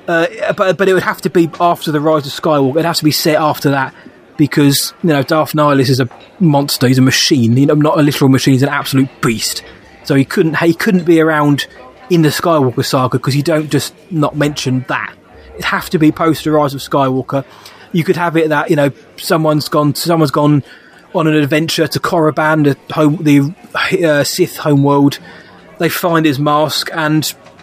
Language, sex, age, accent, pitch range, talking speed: English, male, 20-39, British, 140-165 Hz, 205 wpm